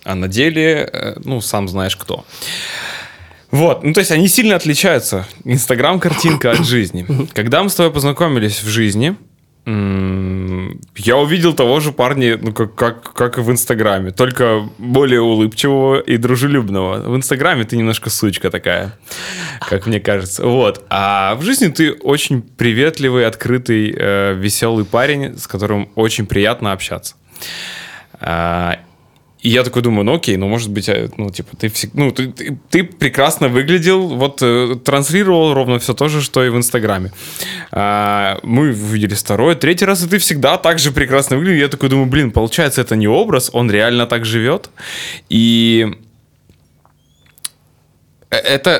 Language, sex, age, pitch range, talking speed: Russian, male, 20-39, 110-140 Hz, 145 wpm